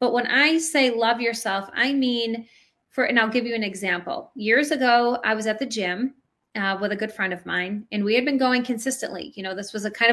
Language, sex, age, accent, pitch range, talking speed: English, female, 30-49, American, 215-260 Hz, 245 wpm